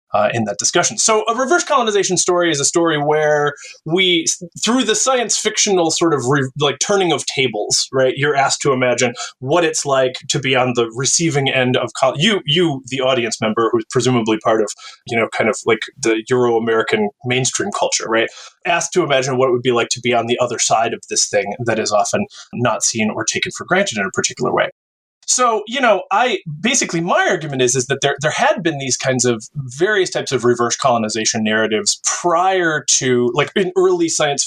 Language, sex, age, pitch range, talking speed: English, male, 20-39, 125-165 Hz, 205 wpm